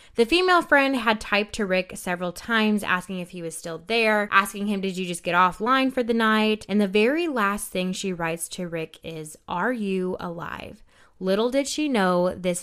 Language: English